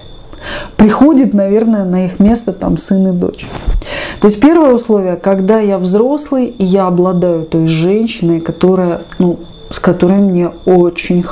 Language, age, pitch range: Russian, 30-49, 175-230 Hz